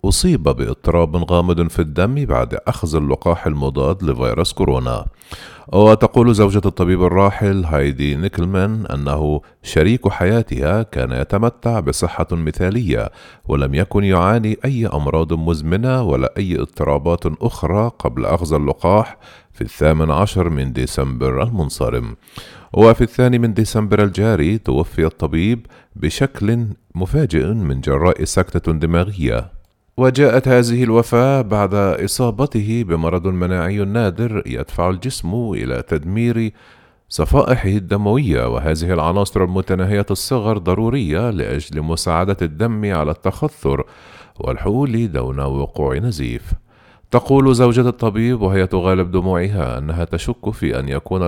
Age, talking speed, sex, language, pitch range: 40-59, 110 wpm, male, Arabic, 80-115 Hz